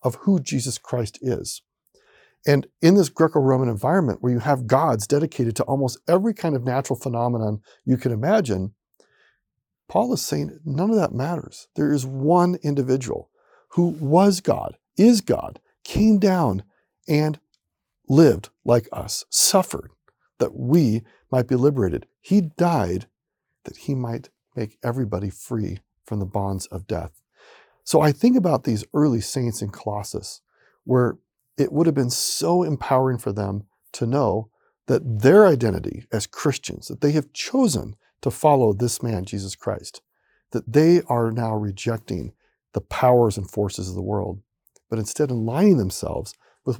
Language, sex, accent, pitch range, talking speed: English, male, American, 110-155 Hz, 155 wpm